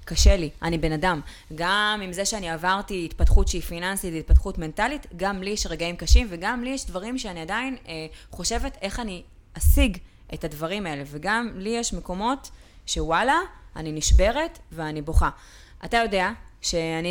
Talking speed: 160 wpm